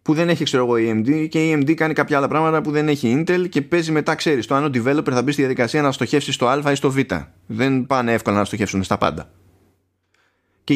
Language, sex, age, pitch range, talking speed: Greek, male, 20-39, 100-150 Hz, 240 wpm